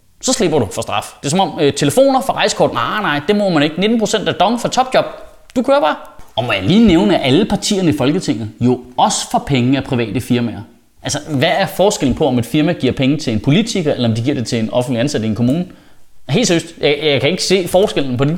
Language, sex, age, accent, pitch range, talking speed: Danish, male, 30-49, native, 140-210 Hz, 255 wpm